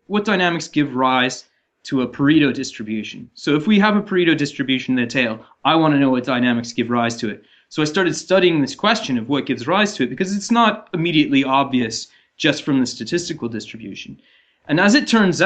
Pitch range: 125-175 Hz